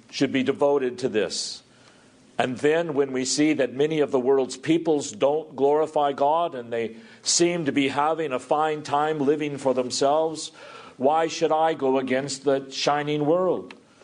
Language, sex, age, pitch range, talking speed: English, male, 50-69, 125-155 Hz, 165 wpm